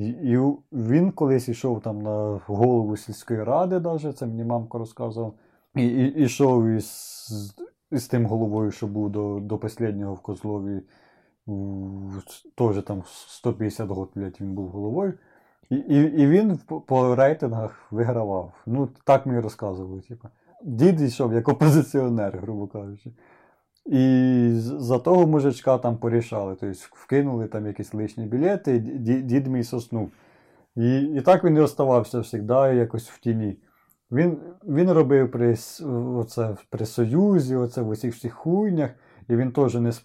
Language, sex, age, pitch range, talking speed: Ukrainian, male, 30-49, 105-135 Hz, 140 wpm